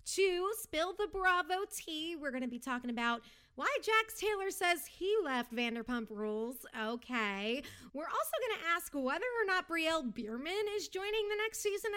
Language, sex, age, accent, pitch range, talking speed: English, female, 30-49, American, 245-355 Hz, 175 wpm